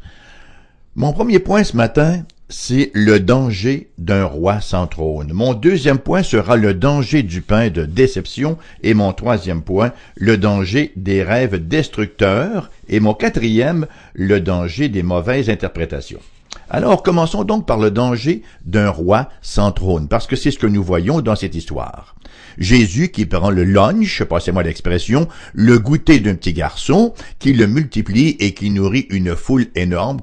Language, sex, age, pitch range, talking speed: English, male, 60-79, 95-145 Hz, 160 wpm